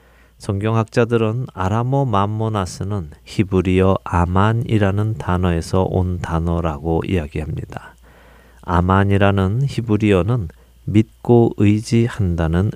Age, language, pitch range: 40-59, Korean, 85-115 Hz